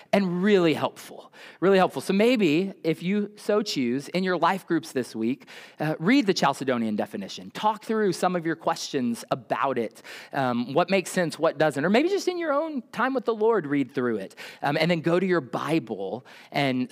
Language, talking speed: English, 200 wpm